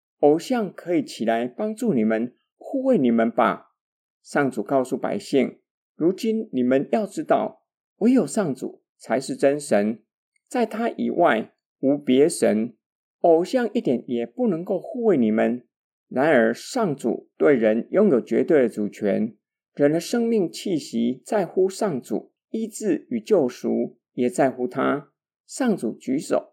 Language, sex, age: Chinese, male, 50-69